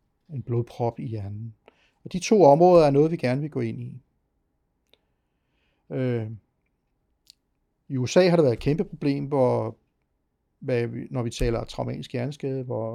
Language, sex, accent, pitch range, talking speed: Danish, male, native, 120-145 Hz, 160 wpm